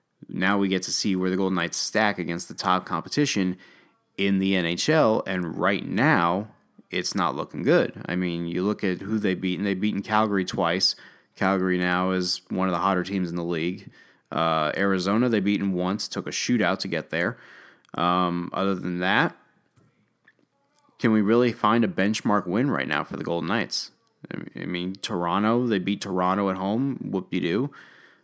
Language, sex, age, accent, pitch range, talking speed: English, male, 20-39, American, 90-105 Hz, 185 wpm